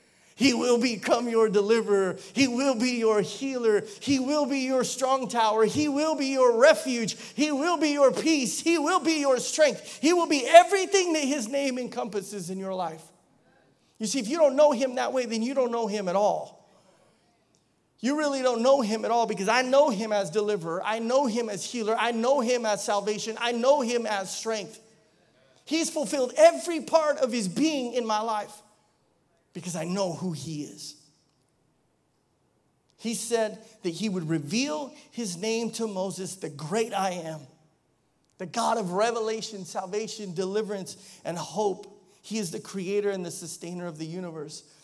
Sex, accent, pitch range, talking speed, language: male, American, 195-255 Hz, 180 wpm, English